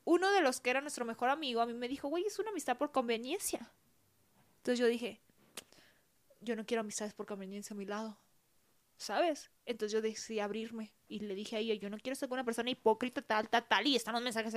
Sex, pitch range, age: female, 225-280 Hz, 20-39